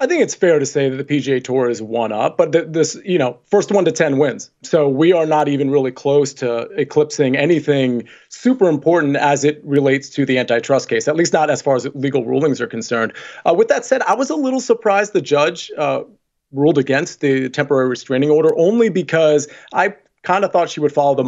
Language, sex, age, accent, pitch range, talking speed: English, male, 30-49, American, 135-160 Hz, 225 wpm